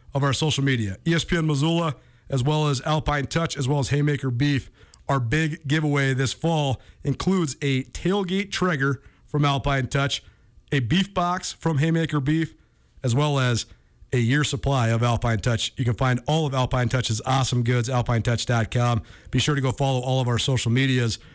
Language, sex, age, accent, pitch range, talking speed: English, male, 40-59, American, 125-150 Hz, 175 wpm